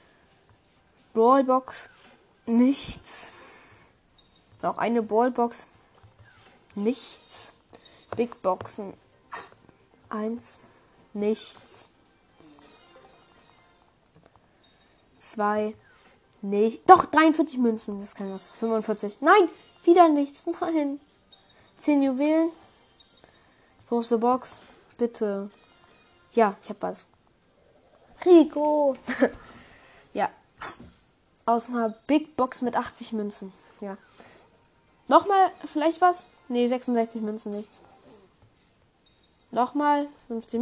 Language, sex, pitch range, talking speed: German, female, 225-295 Hz, 75 wpm